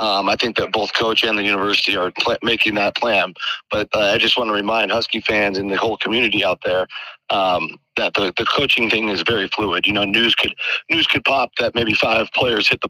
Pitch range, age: 110-130 Hz, 30-49